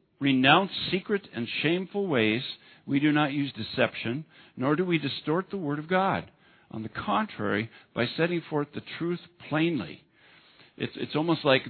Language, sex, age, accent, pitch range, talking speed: English, male, 50-69, American, 115-160 Hz, 160 wpm